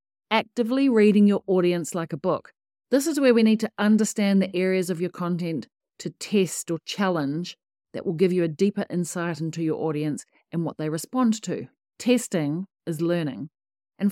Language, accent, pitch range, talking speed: English, Australian, 170-220 Hz, 180 wpm